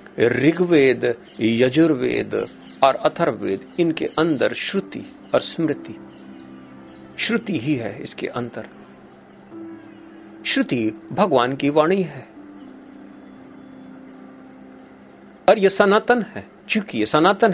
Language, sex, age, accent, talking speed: Hindi, male, 50-69, native, 90 wpm